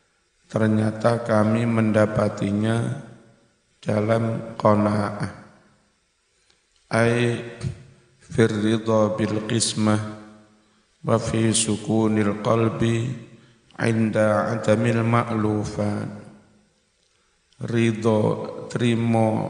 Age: 50-69